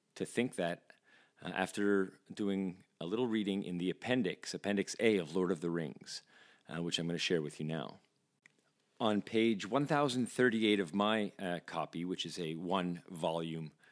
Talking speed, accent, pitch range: 170 wpm, American, 90-115 Hz